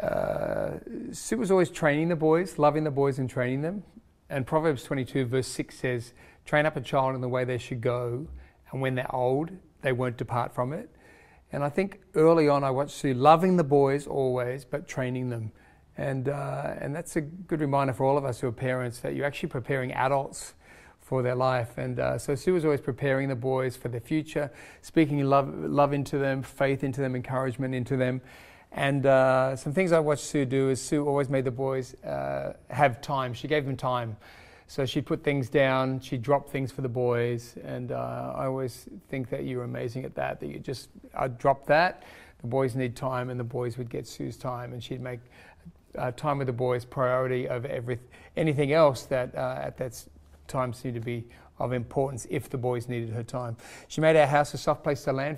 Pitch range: 125-145 Hz